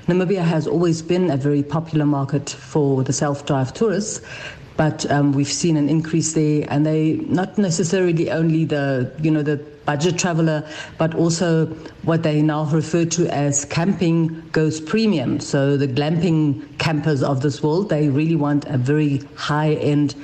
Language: English